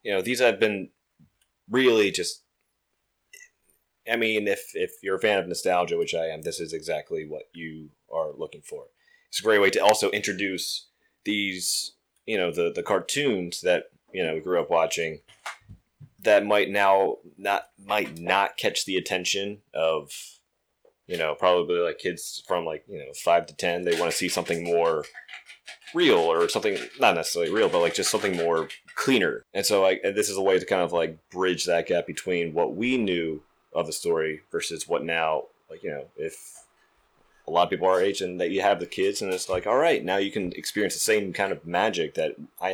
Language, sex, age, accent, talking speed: English, male, 30-49, American, 200 wpm